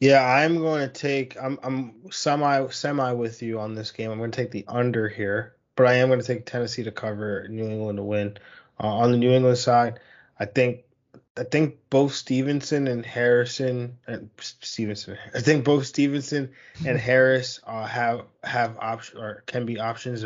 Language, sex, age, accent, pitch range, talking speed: English, male, 20-39, American, 110-125 Hz, 190 wpm